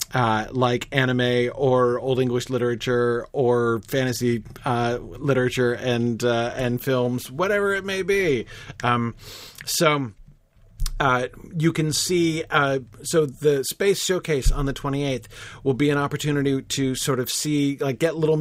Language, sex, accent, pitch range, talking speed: English, male, American, 110-140 Hz, 145 wpm